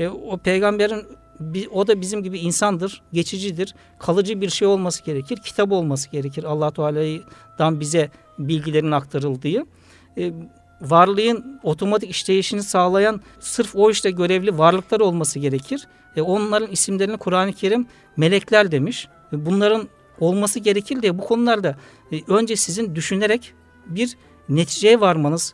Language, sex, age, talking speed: Turkish, male, 60-79, 125 wpm